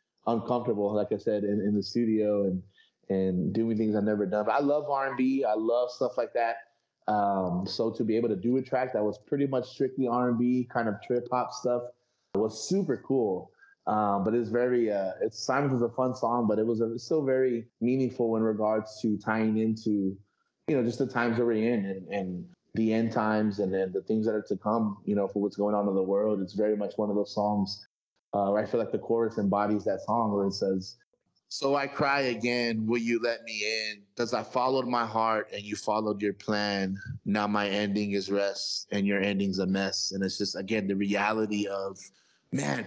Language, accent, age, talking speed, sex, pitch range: English, American, 20-39, 220 wpm, male, 100-120 Hz